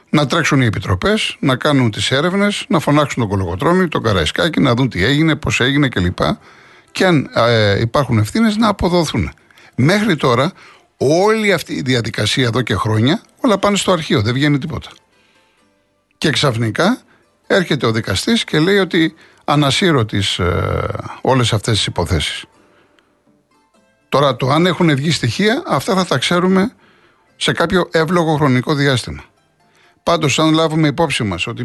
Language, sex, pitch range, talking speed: Greek, male, 110-155 Hz, 150 wpm